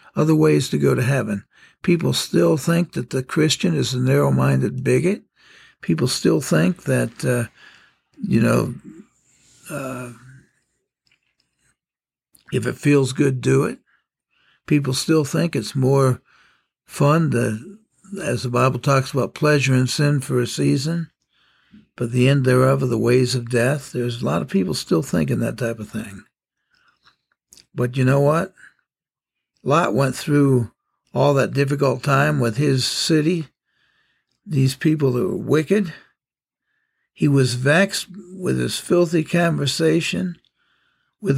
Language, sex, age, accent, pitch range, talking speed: English, male, 60-79, American, 125-155 Hz, 135 wpm